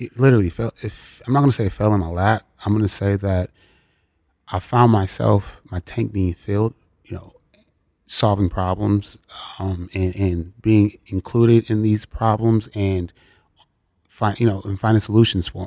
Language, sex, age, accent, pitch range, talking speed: English, male, 20-39, American, 90-110 Hz, 175 wpm